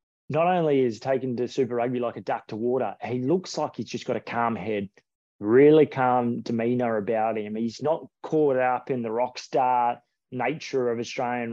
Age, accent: 20-39, Australian